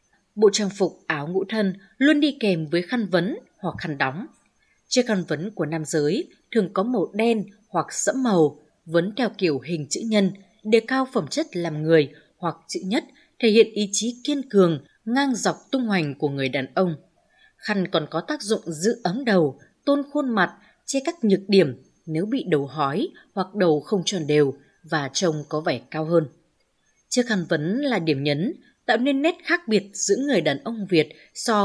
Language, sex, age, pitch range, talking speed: Vietnamese, female, 20-39, 160-225 Hz, 195 wpm